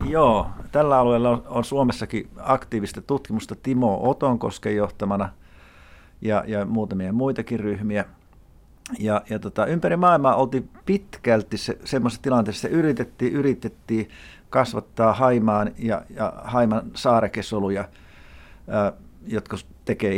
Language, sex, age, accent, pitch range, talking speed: Finnish, male, 50-69, native, 100-130 Hz, 110 wpm